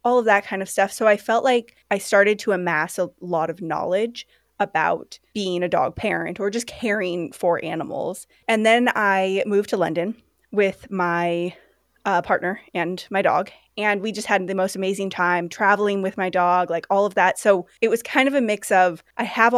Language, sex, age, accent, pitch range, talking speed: English, female, 20-39, American, 180-235 Hz, 205 wpm